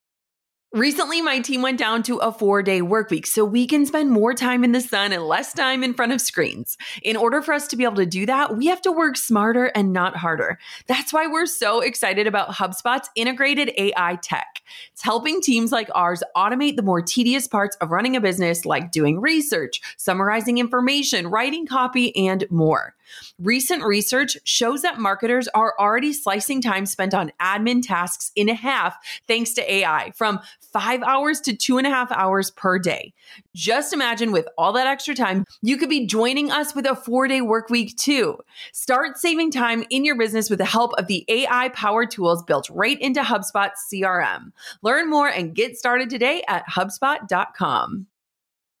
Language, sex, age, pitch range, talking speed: English, female, 30-49, 200-265 Hz, 185 wpm